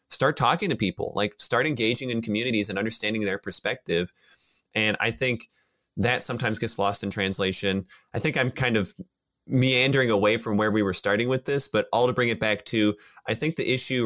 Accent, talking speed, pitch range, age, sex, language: American, 200 wpm, 100-125 Hz, 20-39, male, English